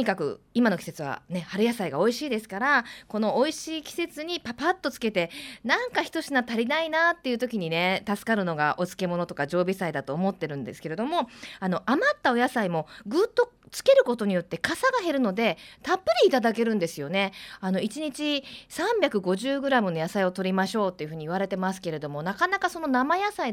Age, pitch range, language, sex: 20-39, 185-285 Hz, Japanese, female